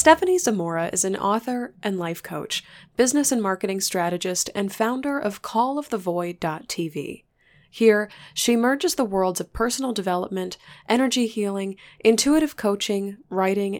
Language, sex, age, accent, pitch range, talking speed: English, female, 20-39, American, 185-235 Hz, 130 wpm